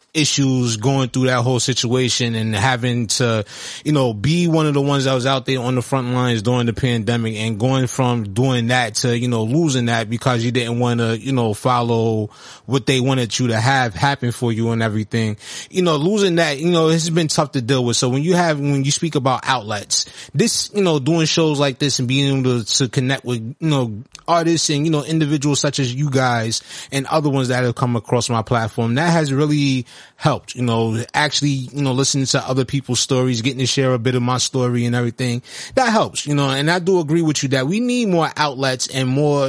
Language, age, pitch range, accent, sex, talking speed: English, 20-39, 120-145 Hz, American, male, 230 wpm